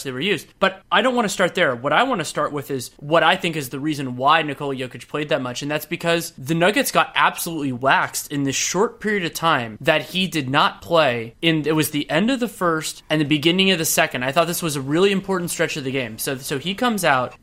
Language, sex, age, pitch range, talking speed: English, male, 20-39, 145-175 Hz, 270 wpm